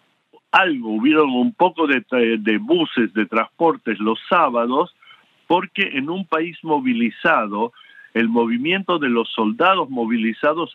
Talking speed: 125 wpm